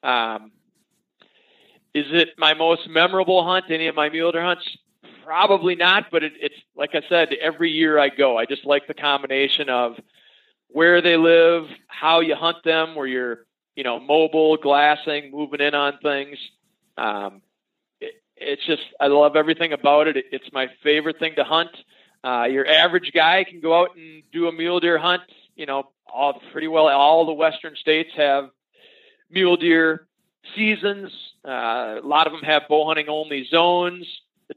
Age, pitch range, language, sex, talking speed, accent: 40-59, 145-175 Hz, English, male, 170 wpm, American